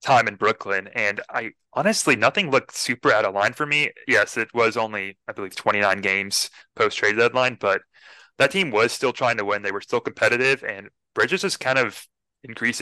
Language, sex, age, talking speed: English, male, 20-39, 200 wpm